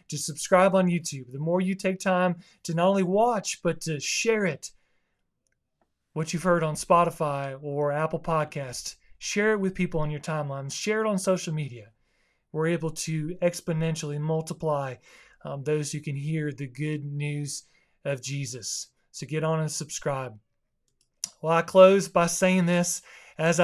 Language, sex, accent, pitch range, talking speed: English, male, American, 145-180 Hz, 160 wpm